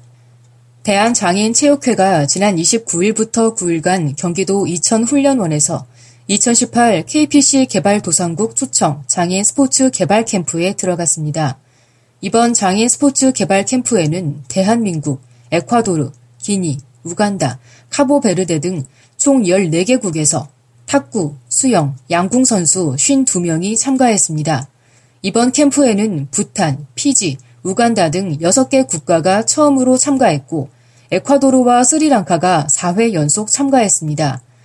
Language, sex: Korean, female